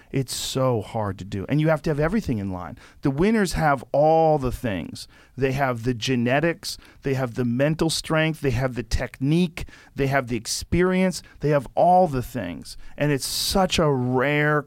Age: 40-59